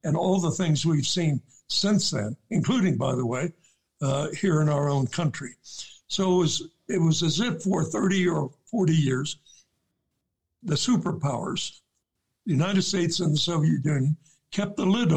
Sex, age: male, 60-79